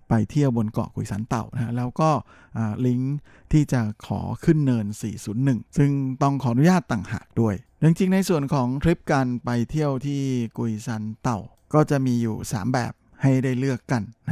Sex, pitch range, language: male, 110-135 Hz, Thai